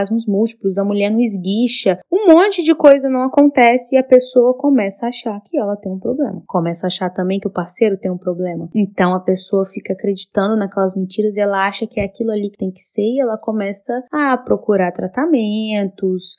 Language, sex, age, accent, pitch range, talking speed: Portuguese, female, 20-39, Brazilian, 200-255 Hz, 205 wpm